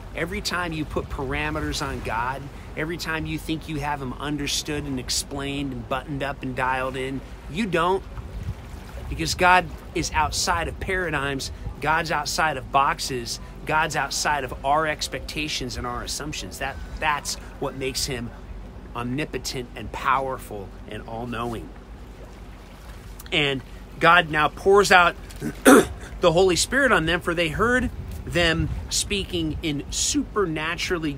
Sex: male